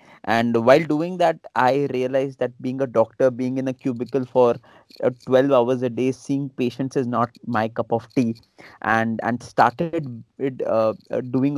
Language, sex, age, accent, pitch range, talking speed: Hindi, male, 30-49, native, 120-140 Hz, 175 wpm